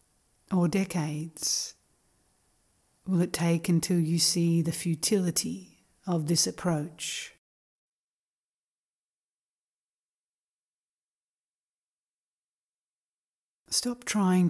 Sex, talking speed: female, 60 wpm